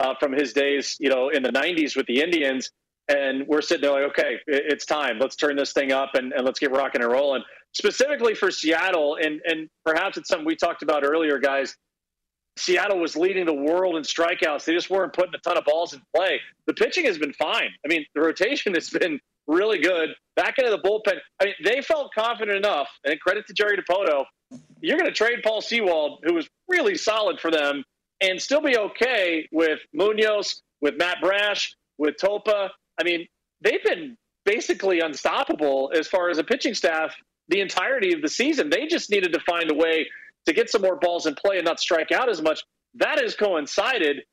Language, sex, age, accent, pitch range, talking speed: English, male, 40-59, American, 160-230 Hz, 205 wpm